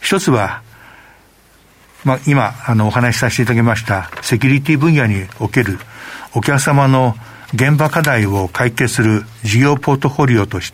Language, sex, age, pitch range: Japanese, male, 60-79, 110-140 Hz